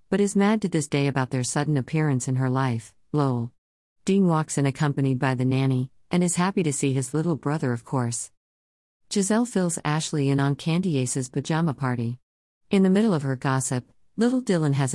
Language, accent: English, American